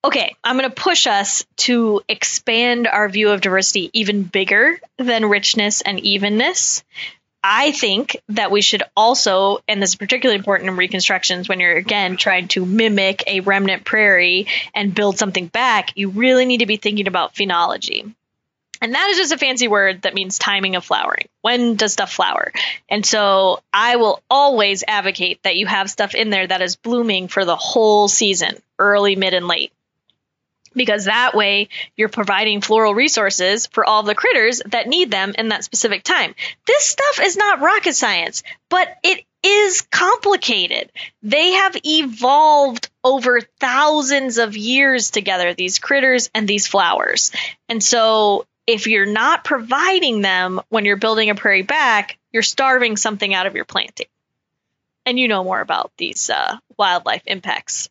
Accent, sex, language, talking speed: American, female, English, 165 wpm